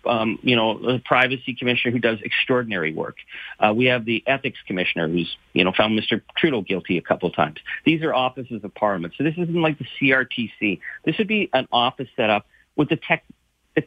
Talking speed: 210 wpm